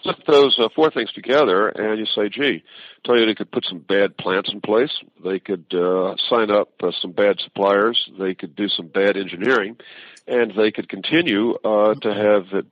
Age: 50-69